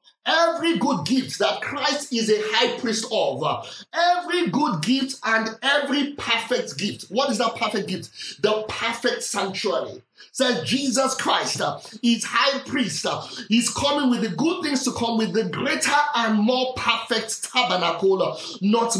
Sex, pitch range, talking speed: male, 220-270 Hz, 150 wpm